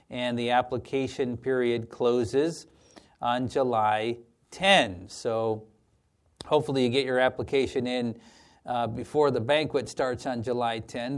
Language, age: English, 40-59